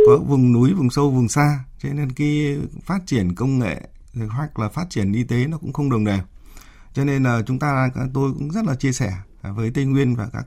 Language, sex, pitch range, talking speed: Vietnamese, male, 105-140 Hz, 235 wpm